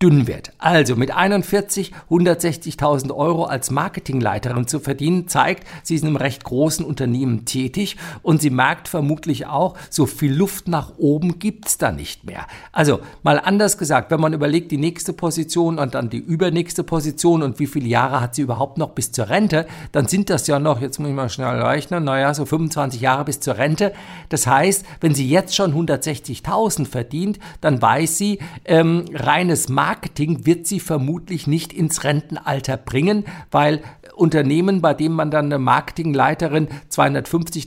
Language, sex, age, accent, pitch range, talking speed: German, male, 50-69, German, 140-175 Hz, 175 wpm